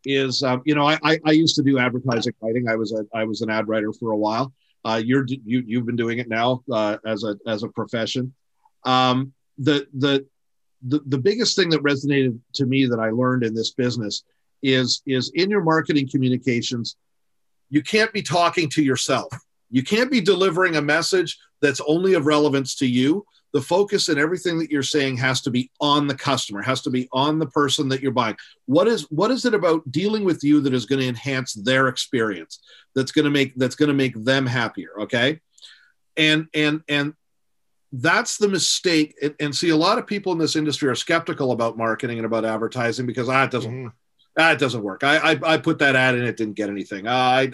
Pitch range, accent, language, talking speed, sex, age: 120-150 Hz, American, English, 210 wpm, male, 40-59